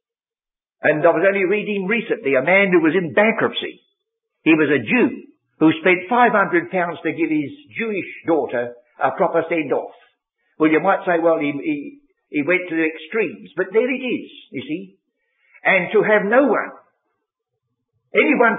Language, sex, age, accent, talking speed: English, male, 60-79, British, 170 wpm